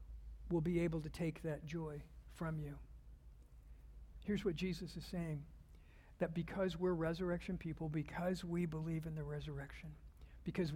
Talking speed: 145 wpm